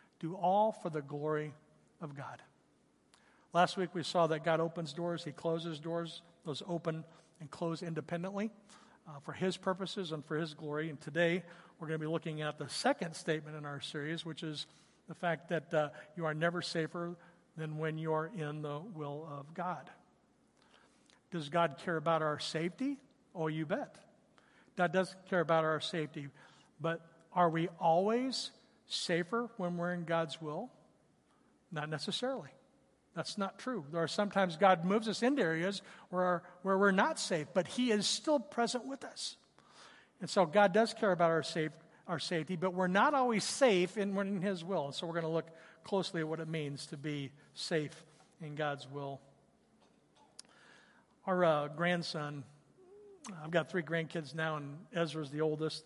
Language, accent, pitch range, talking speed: English, American, 155-185 Hz, 175 wpm